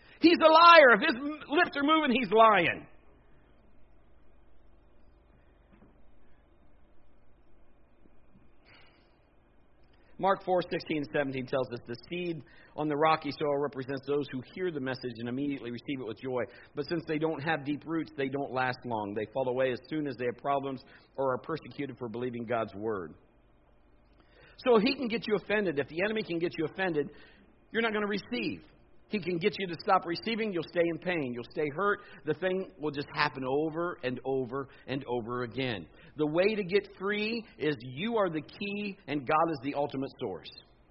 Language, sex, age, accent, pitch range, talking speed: English, male, 50-69, American, 130-180 Hz, 175 wpm